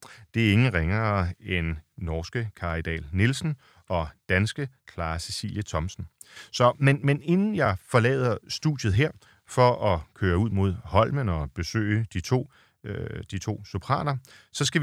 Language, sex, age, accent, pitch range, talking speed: Danish, male, 40-59, native, 90-125 Hz, 140 wpm